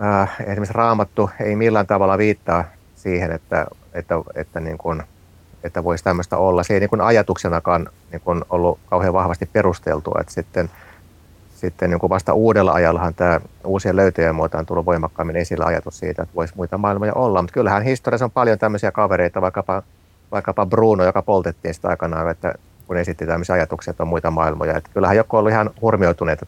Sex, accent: male, native